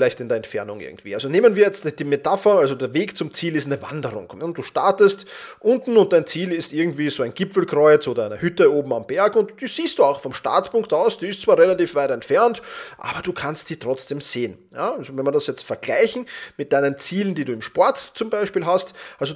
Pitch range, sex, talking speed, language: 160-225 Hz, male, 230 wpm, German